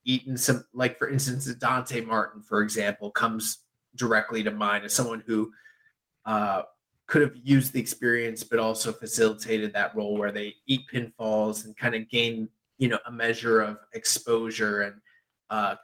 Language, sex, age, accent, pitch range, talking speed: English, male, 20-39, American, 110-135 Hz, 165 wpm